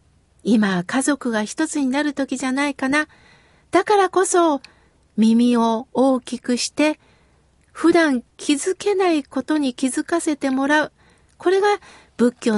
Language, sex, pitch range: Japanese, female, 270-335 Hz